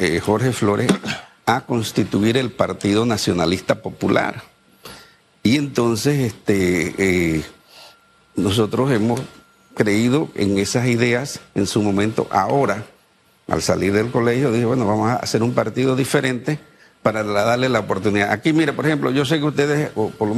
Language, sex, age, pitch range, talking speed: Spanish, male, 60-79, 105-135 Hz, 145 wpm